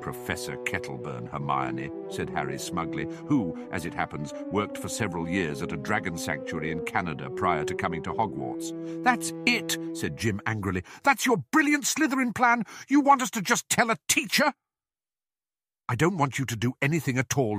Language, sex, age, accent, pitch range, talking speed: English, male, 50-69, British, 110-160 Hz, 175 wpm